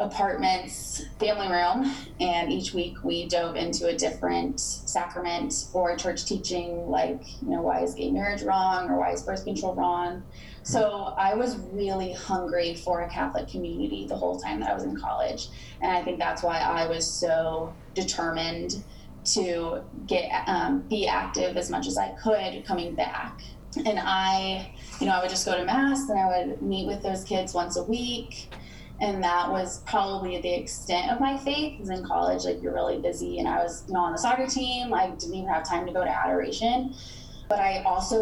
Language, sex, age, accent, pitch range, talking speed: English, female, 20-39, American, 170-205 Hz, 195 wpm